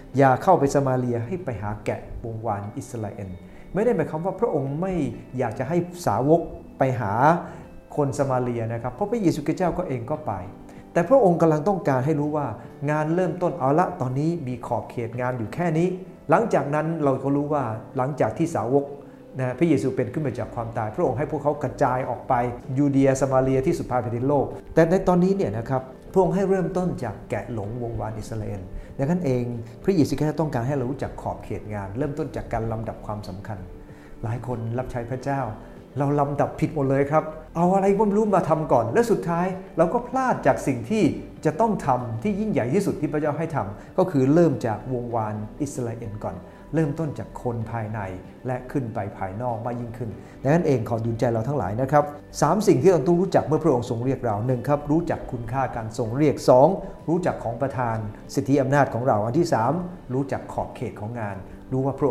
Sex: male